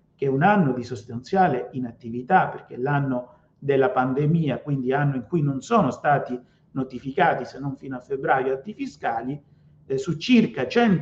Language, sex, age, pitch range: Italian, male, 50-69, 130-165 Hz